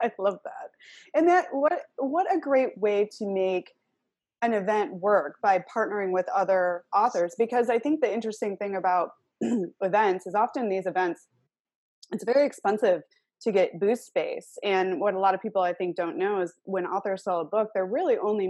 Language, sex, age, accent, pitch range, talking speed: English, female, 20-39, American, 175-215 Hz, 190 wpm